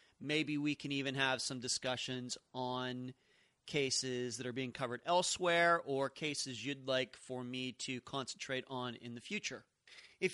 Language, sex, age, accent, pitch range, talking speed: English, male, 30-49, American, 130-165 Hz, 155 wpm